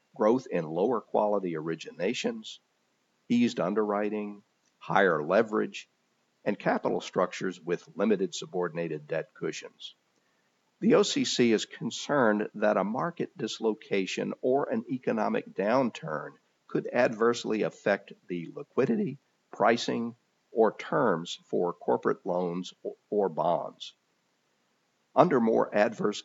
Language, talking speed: English, 100 wpm